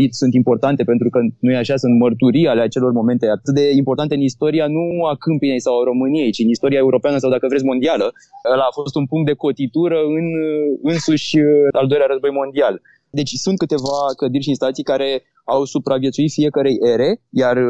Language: Romanian